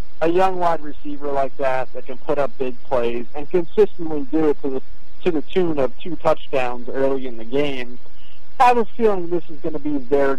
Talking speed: 220 wpm